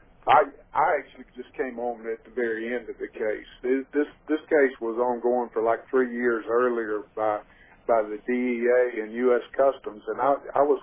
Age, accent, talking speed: 50-69, American, 210 wpm